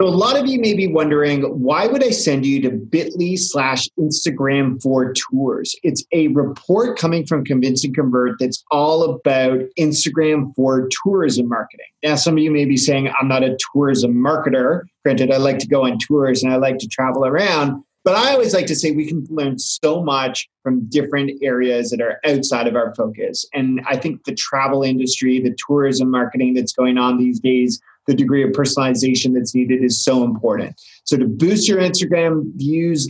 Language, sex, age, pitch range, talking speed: English, male, 30-49, 130-155 Hz, 195 wpm